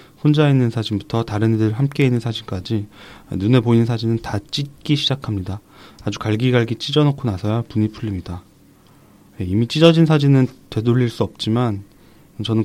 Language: Korean